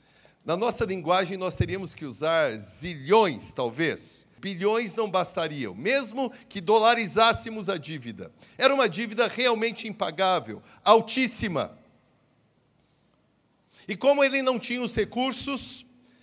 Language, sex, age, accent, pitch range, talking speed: Portuguese, male, 50-69, Brazilian, 185-250 Hz, 110 wpm